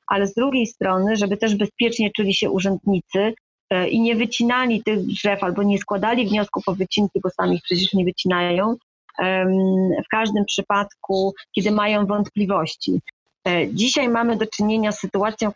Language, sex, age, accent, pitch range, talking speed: Polish, female, 30-49, native, 195-225 Hz, 155 wpm